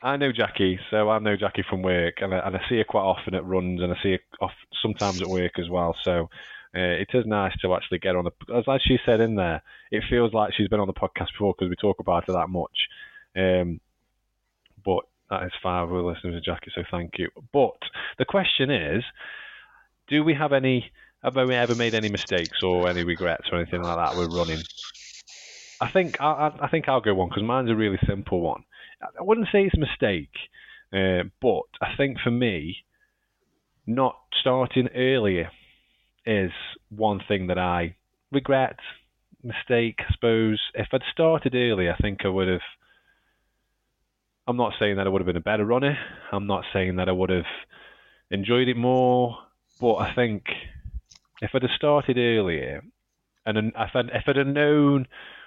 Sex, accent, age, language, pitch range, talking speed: male, British, 20-39, English, 90-125 Hz, 190 wpm